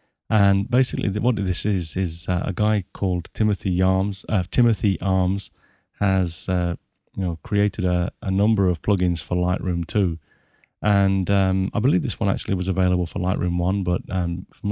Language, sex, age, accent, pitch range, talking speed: English, male, 30-49, British, 90-105 Hz, 170 wpm